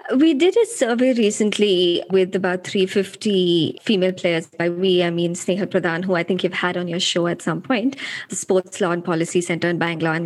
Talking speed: 210 wpm